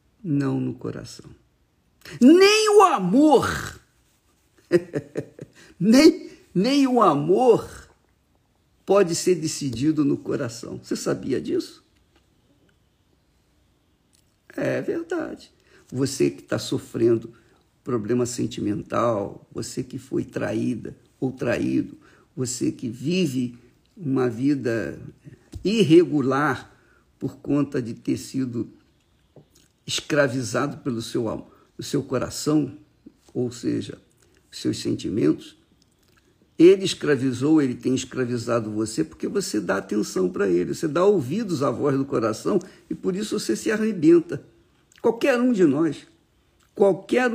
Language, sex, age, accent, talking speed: Portuguese, male, 50-69, Brazilian, 105 wpm